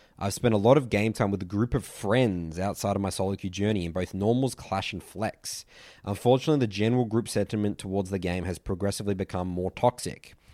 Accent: Australian